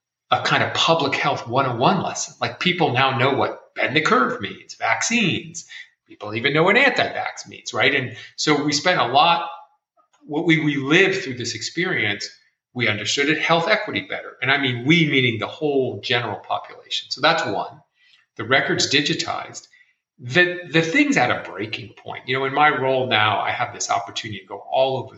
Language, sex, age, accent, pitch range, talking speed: English, male, 40-59, American, 125-170 Hz, 190 wpm